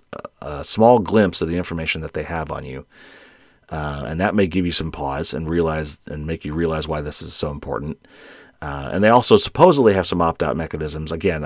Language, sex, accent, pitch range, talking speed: English, male, American, 80-100 Hz, 210 wpm